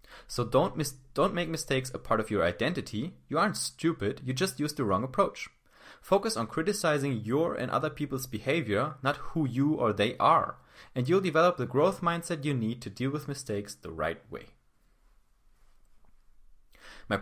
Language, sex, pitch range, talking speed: English, male, 100-140 Hz, 175 wpm